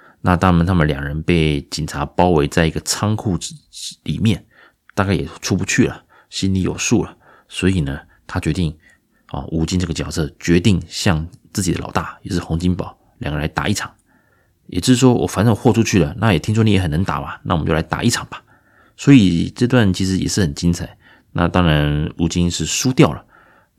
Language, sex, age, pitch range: Chinese, male, 30-49, 80-95 Hz